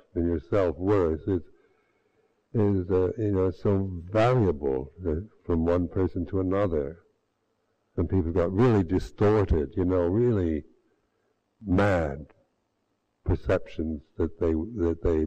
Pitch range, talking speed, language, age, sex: 85-110 Hz, 115 wpm, English, 60-79, male